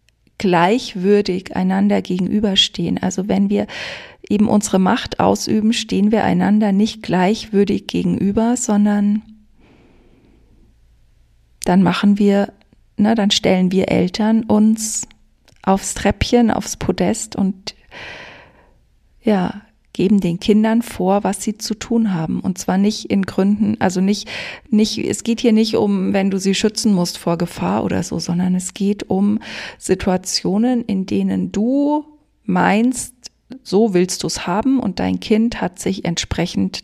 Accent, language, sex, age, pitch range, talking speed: German, German, female, 40-59, 170-220 Hz, 135 wpm